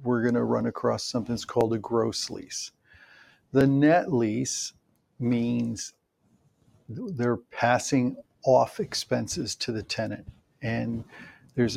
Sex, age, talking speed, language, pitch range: male, 50-69, 120 wpm, English, 115-135 Hz